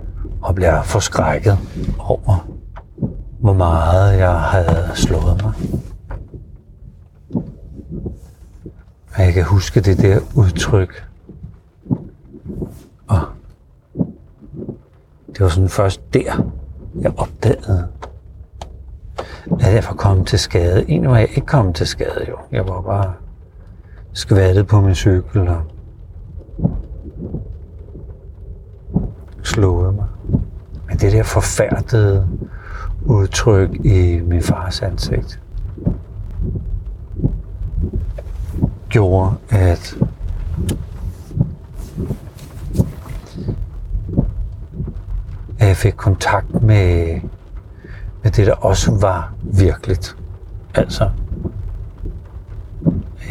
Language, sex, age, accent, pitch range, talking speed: Danish, male, 60-79, native, 90-100 Hz, 80 wpm